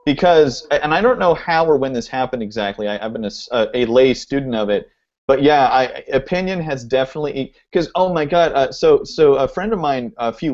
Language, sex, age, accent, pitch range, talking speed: English, male, 40-59, American, 120-155 Hz, 220 wpm